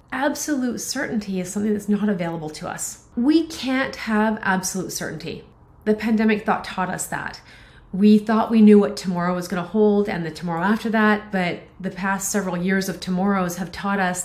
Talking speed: 190 wpm